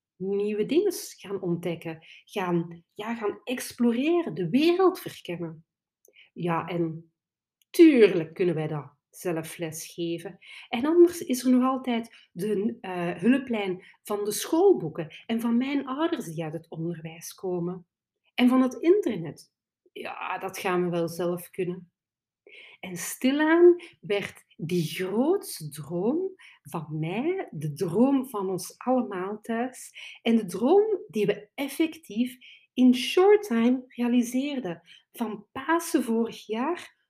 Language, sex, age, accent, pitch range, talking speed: Dutch, female, 40-59, Dutch, 180-260 Hz, 130 wpm